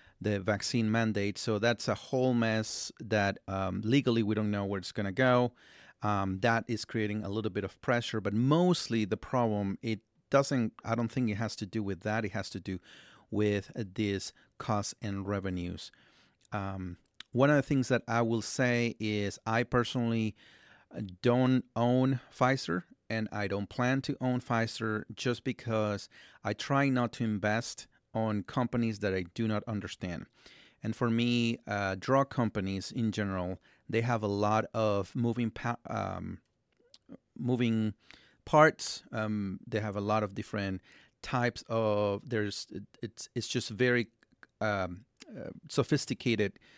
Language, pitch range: English, 100-120 Hz